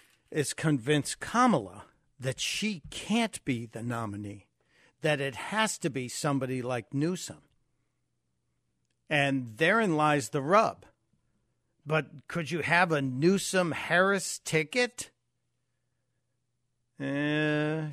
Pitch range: 125-165 Hz